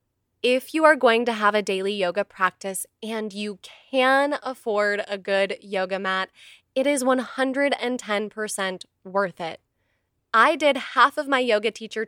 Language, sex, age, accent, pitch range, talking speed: English, female, 10-29, American, 195-245 Hz, 150 wpm